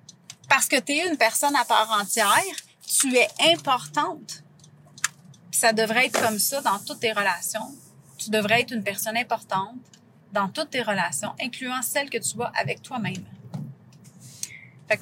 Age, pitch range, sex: 30-49, 220-295 Hz, female